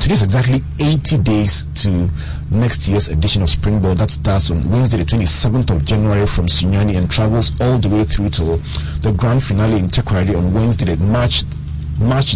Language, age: English, 40-59